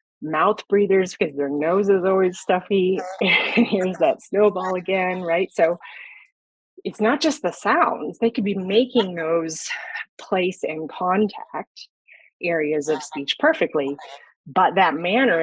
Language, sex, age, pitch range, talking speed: English, female, 30-49, 155-200 Hz, 135 wpm